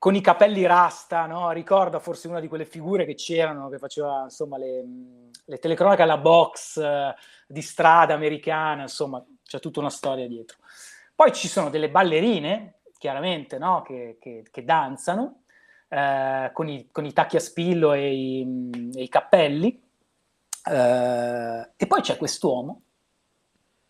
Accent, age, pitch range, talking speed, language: native, 30-49, 145-200 Hz, 150 wpm, Italian